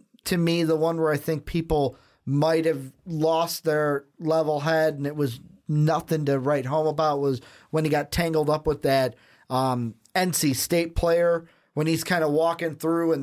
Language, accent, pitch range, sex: English, American, 135-160 Hz, male